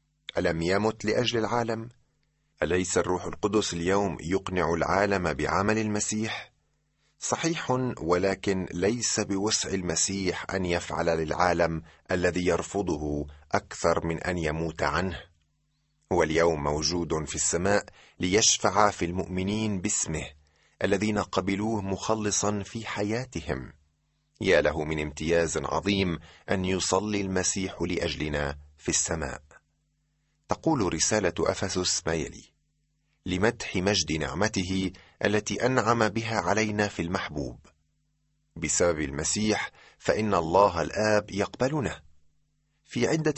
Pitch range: 80-110 Hz